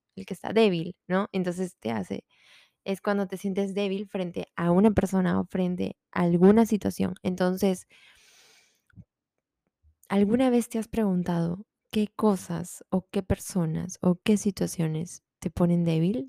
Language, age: Spanish, 20-39